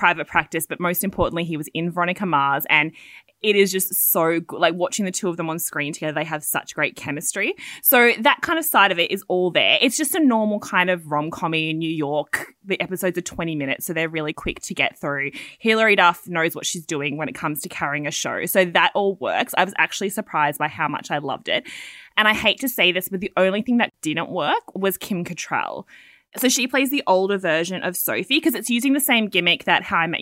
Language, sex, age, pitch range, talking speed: English, female, 20-39, 165-215 Hz, 245 wpm